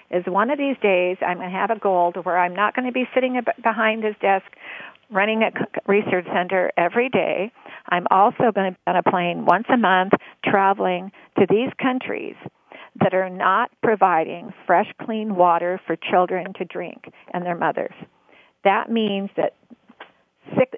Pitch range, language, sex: 180-220 Hz, English, female